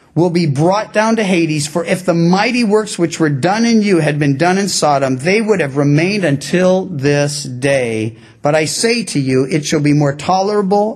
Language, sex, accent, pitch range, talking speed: English, male, American, 150-215 Hz, 210 wpm